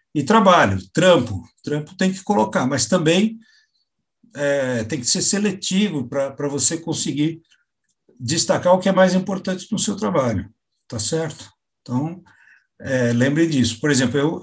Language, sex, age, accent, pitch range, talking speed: Portuguese, male, 60-79, Brazilian, 125-170 Hz, 145 wpm